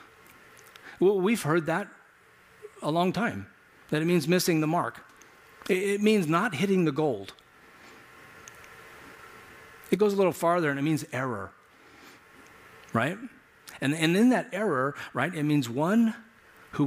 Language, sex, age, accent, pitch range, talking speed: English, male, 50-69, American, 115-170 Hz, 140 wpm